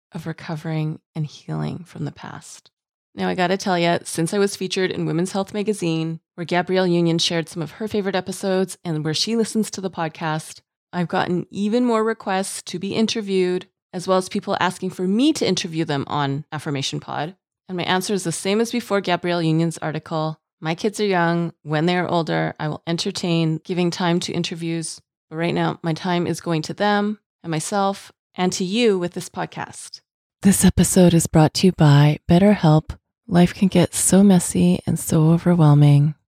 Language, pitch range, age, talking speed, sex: English, 160-190 Hz, 30-49, 190 wpm, female